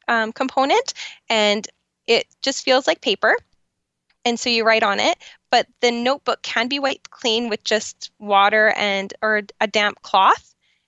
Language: English